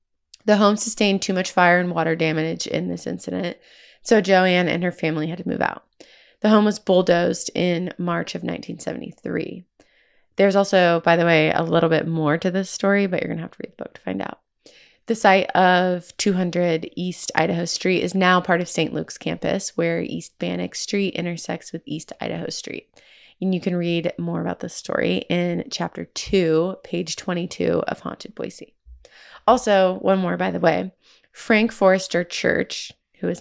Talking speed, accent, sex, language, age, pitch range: 185 wpm, American, female, English, 20-39, 170-195 Hz